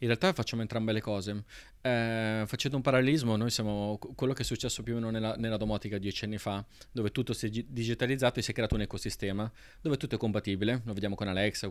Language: Italian